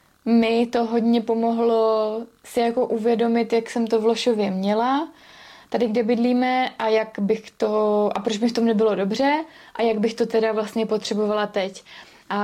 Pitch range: 210-230 Hz